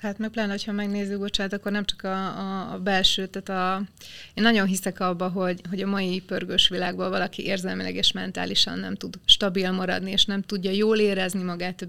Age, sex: 20-39, female